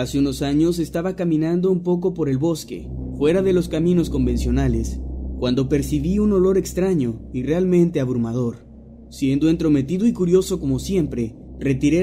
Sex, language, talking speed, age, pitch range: male, Spanish, 150 wpm, 30-49, 115-175 Hz